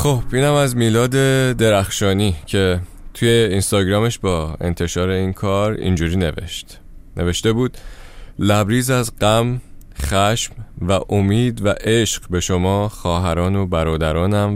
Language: Persian